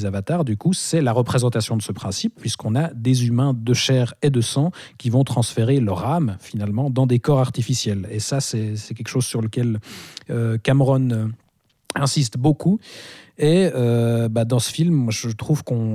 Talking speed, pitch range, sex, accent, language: 190 wpm, 115-140 Hz, male, French, French